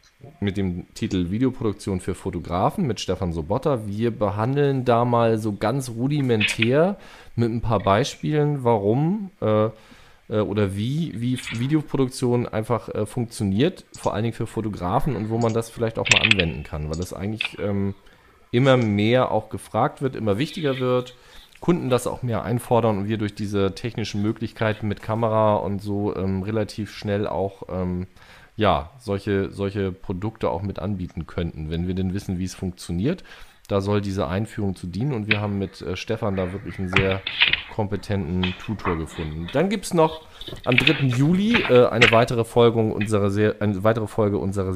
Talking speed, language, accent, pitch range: 165 wpm, English, German, 95-120 Hz